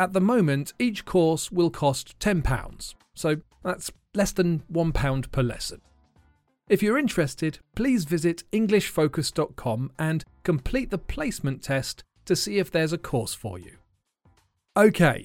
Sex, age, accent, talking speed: male, 40-59, British, 140 wpm